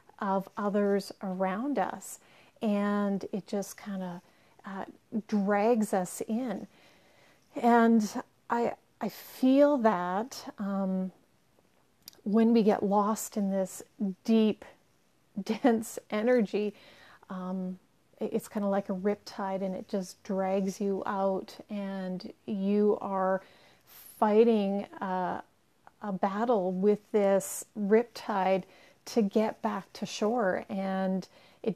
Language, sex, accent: English, female, American